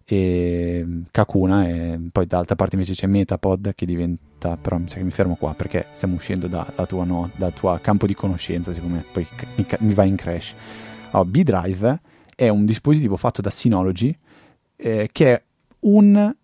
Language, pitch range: Italian, 95-130 Hz